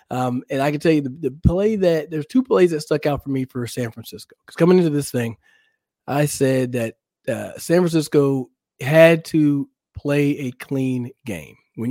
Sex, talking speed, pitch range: male, 195 wpm, 120-150 Hz